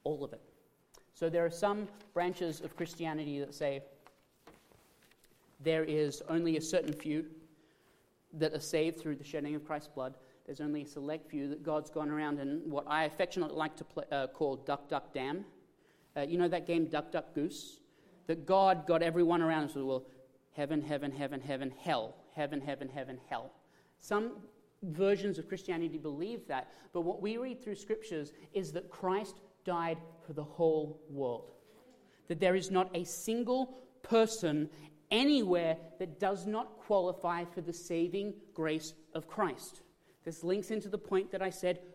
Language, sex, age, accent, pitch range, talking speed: English, male, 30-49, Australian, 155-195 Hz, 170 wpm